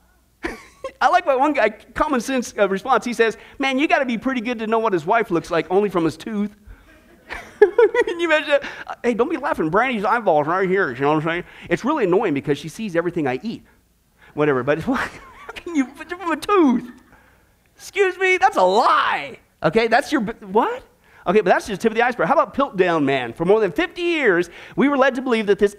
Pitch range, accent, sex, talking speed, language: 205-300 Hz, American, male, 225 wpm, English